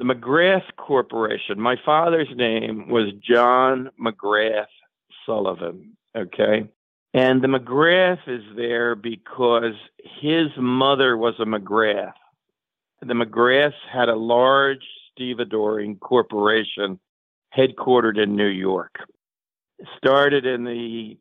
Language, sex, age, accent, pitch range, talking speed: English, male, 50-69, American, 110-130 Hz, 105 wpm